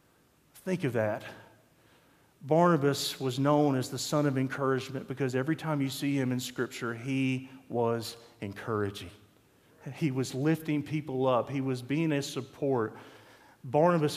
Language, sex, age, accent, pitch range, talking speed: English, male, 40-59, American, 115-150 Hz, 140 wpm